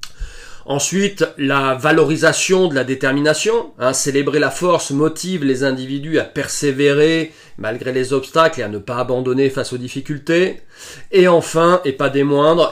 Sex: male